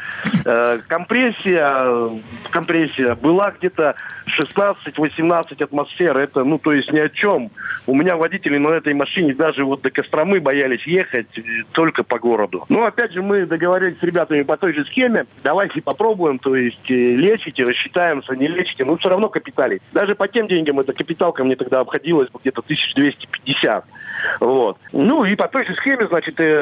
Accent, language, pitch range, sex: native, Russian, 140-185 Hz, male